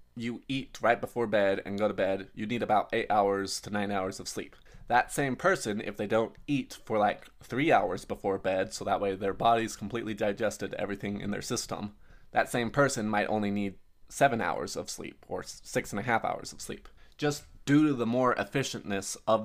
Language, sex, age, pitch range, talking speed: English, male, 20-39, 100-115 Hz, 210 wpm